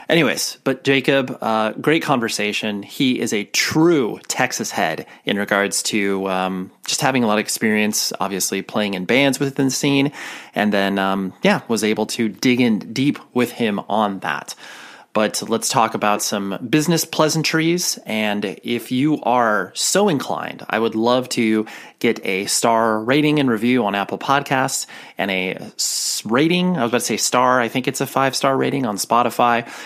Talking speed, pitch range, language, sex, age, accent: 175 wpm, 100-140 Hz, English, male, 30-49, American